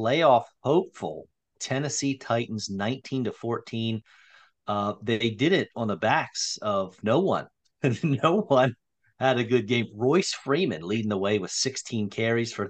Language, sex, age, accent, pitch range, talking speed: English, male, 40-59, American, 105-135 Hz, 155 wpm